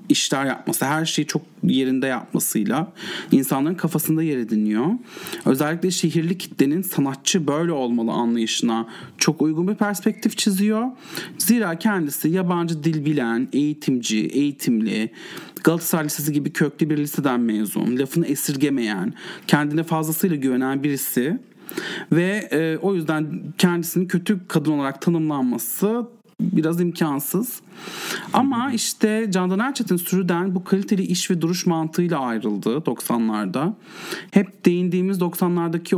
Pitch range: 145-190 Hz